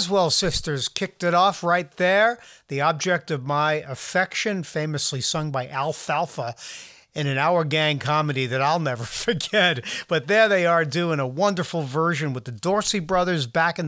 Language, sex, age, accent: English, male, 50-69, American